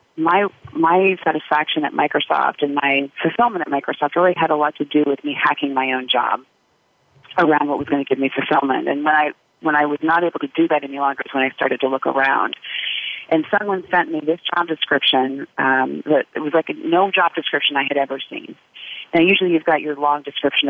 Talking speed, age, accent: 225 wpm, 30-49, American